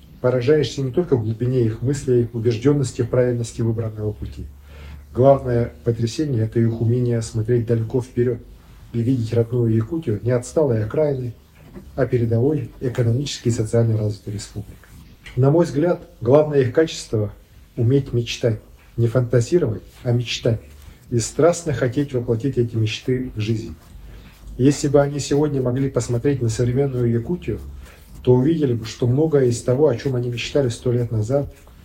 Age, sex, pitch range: 40-59, male, 110-130 Hz